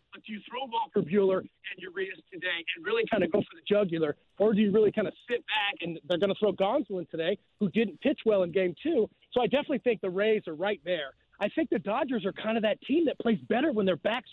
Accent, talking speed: American, 265 wpm